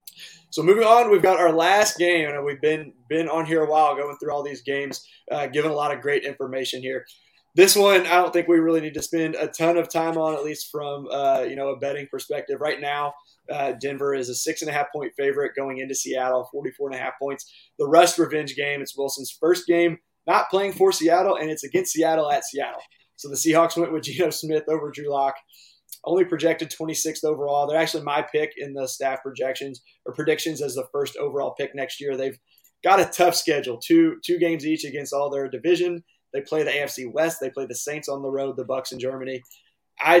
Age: 20-39